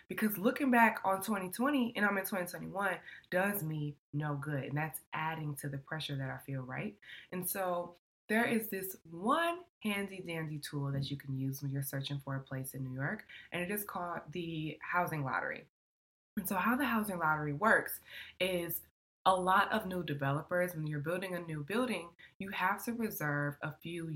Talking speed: 190 wpm